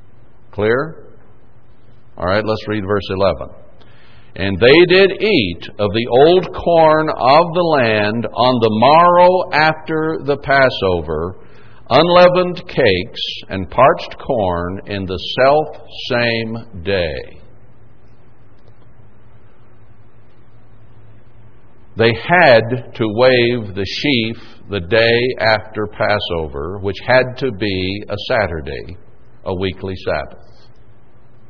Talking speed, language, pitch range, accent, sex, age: 100 wpm, English, 110-130 Hz, American, male, 60-79